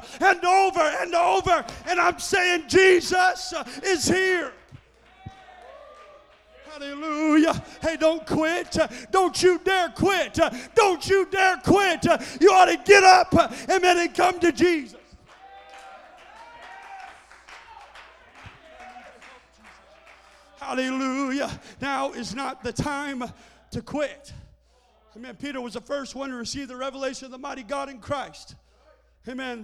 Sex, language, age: male, English, 40-59